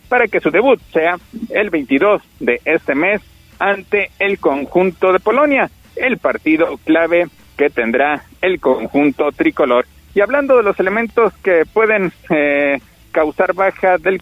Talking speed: 145 wpm